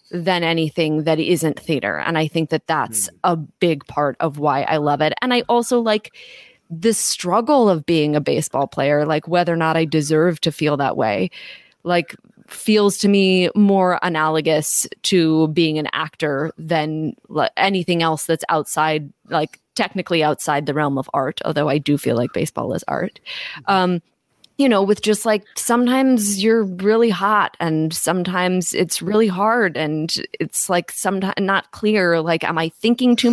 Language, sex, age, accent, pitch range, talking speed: English, female, 20-39, American, 155-200 Hz, 170 wpm